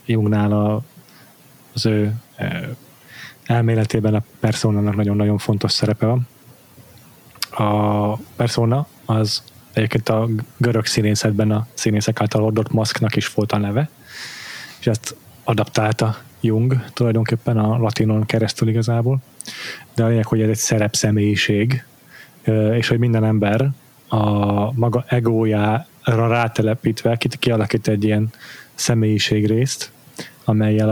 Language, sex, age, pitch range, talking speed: Hungarian, male, 30-49, 105-120 Hz, 110 wpm